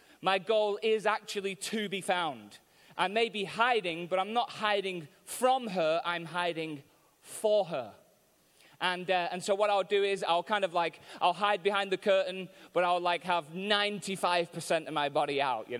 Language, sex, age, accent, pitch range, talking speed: English, male, 20-39, British, 165-205 Hz, 180 wpm